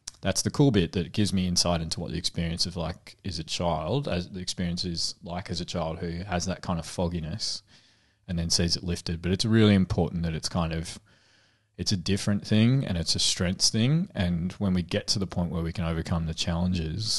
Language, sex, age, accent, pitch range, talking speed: English, male, 20-39, Australian, 85-100 Hz, 230 wpm